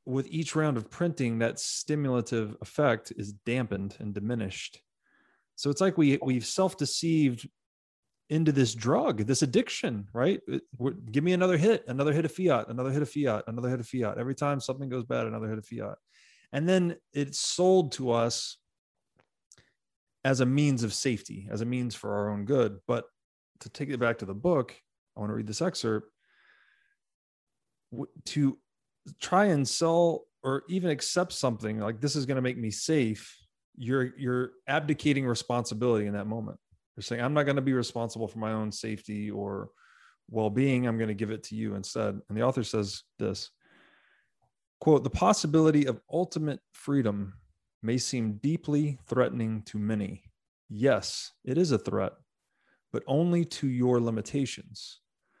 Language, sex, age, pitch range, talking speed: English, male, 20-39, 110-145 Hz, 165 wpm